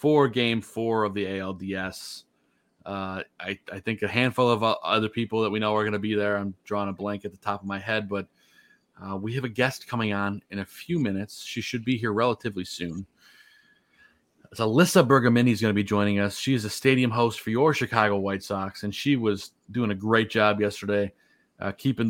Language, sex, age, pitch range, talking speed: English, male, 30-49, 100-115 Hz, 215 wpm